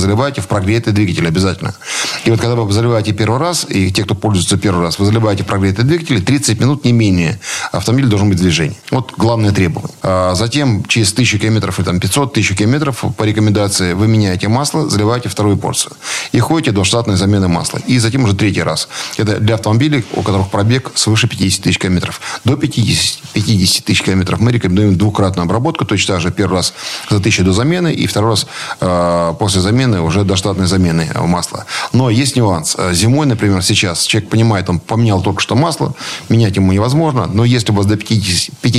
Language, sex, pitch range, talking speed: Russian, male, 95-120 Hz, 190 wpm